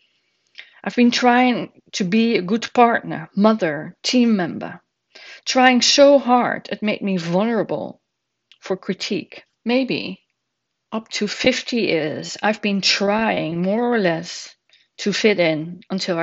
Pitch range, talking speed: 190-245 Hz, 130 wpm